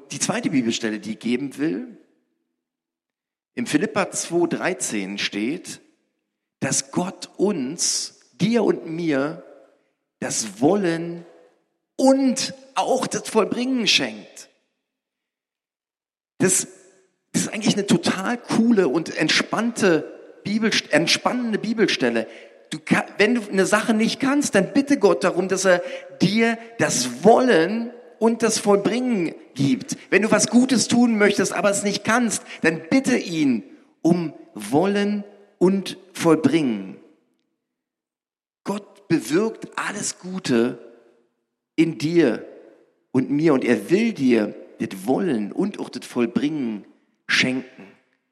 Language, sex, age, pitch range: German, male, 40-59, 155-235 Hz